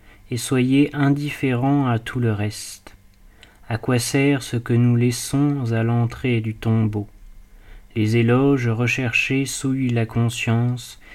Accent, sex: French, male